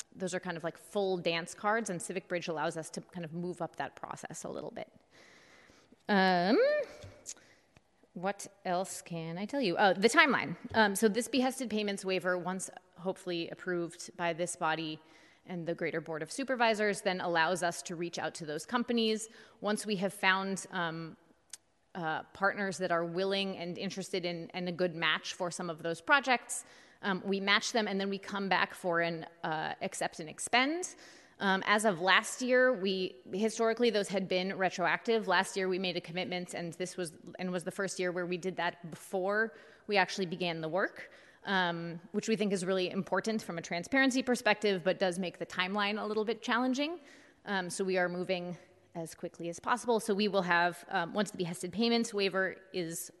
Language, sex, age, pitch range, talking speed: English, female, 30-49, 175-210 Hz, 195 wpm